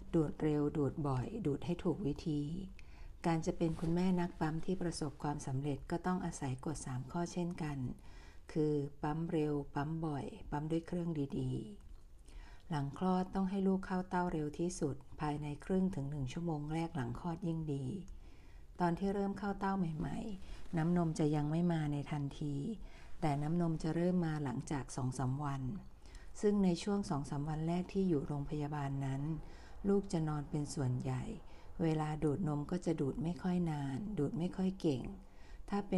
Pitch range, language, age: 145-175 Hz, Thai, 60-79